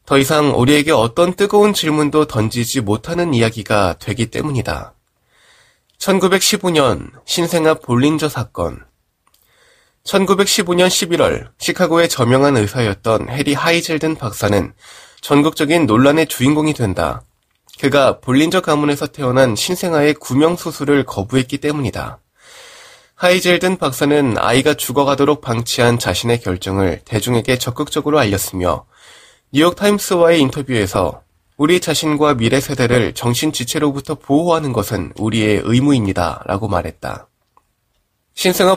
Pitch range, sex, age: 115-160 Hz, male, 20-39